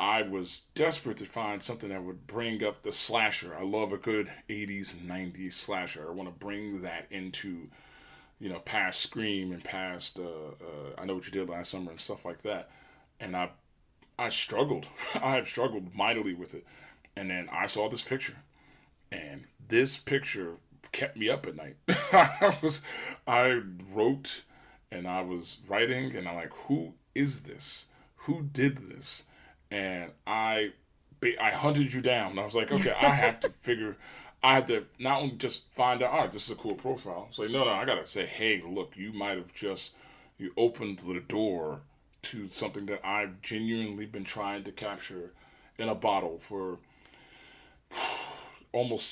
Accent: American